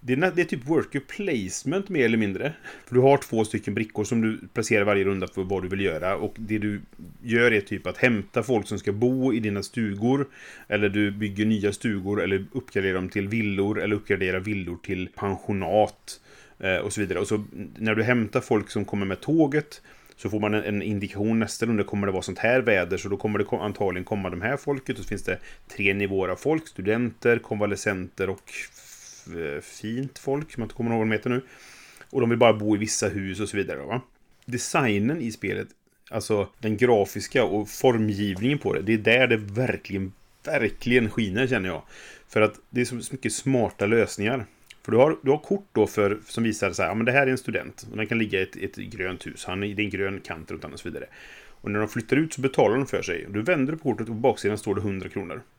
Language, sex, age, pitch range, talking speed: Swedish, male, 30-49, 100-120 Hz, 225 wpm